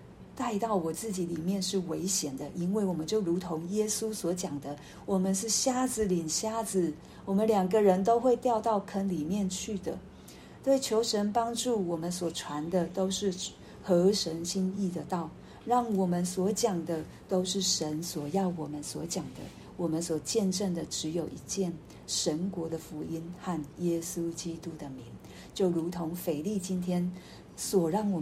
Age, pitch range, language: 50-69, 170-215 Hz, Chinese